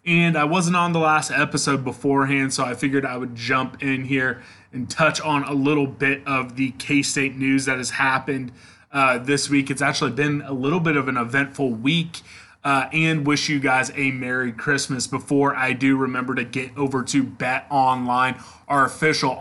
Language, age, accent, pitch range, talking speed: English, 20-39, American, 130-140 Hz, 190 wpm